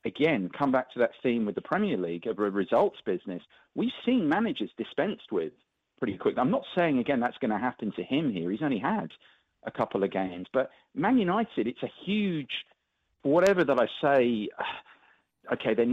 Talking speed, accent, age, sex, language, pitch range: 190 wpm, British, 40-59, male, English, 105-175 Hz